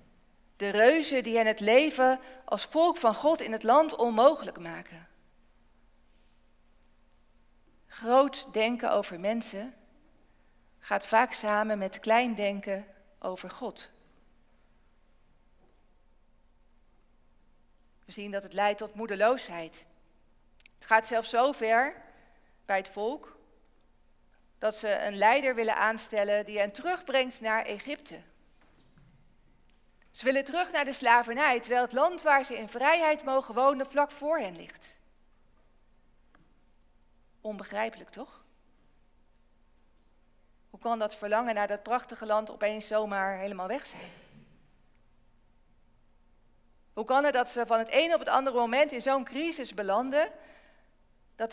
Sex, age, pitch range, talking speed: female, 40-59, 200-265 Hz, 120 wpm